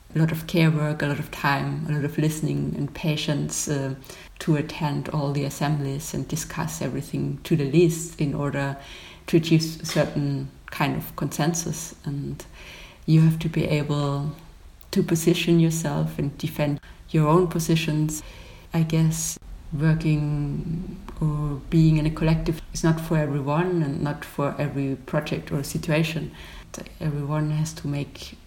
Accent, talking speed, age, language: German, 155 wpm, 70-89, English